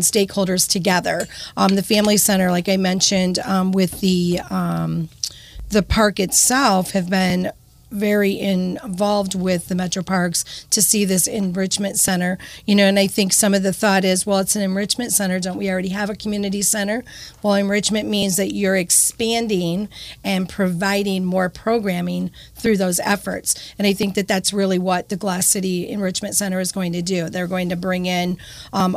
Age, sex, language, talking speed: 40-59, female, English, 180 wpm